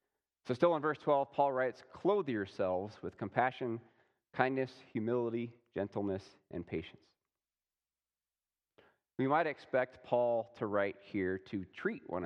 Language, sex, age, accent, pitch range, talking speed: English, male, 30-49, American, 95-125 Hz, 125 wpm